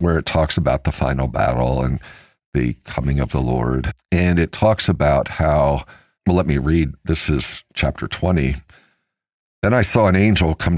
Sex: male